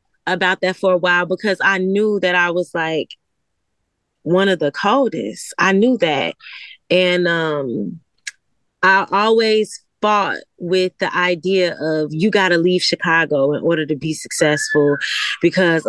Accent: American